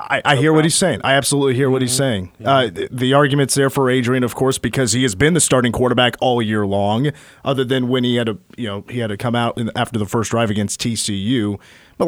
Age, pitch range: 30-49, 110-135 Hz